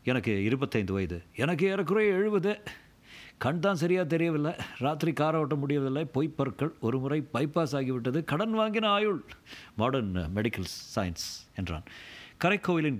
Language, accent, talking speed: Tamil, native, 130 wpm